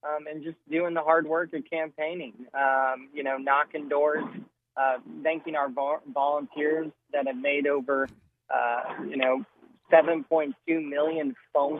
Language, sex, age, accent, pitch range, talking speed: English, male, 20-39, American, 135-155 Hz, 140 wpm